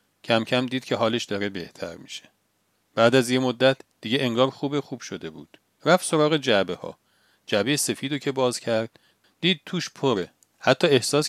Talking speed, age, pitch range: 170 wpm, 40-59, 115-155 Hz